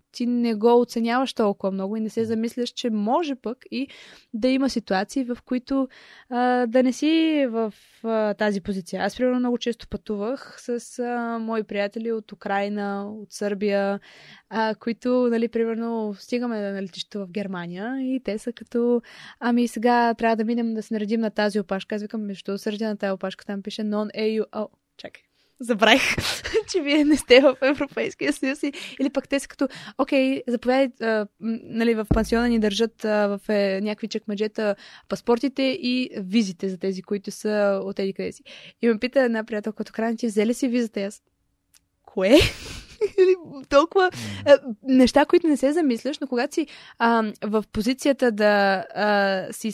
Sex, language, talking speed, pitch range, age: female, Bulgarian, 165 wpm, 210-250 Hz, 20-39